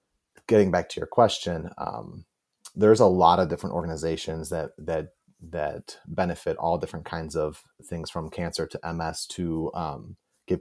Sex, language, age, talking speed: male, English, 30-49, 160 wpm